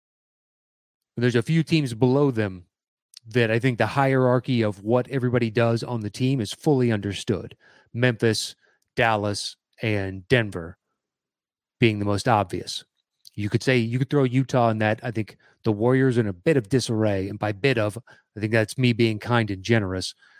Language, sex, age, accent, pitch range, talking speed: English, male, 30-49, American, 105-130 Hz, 175 wpm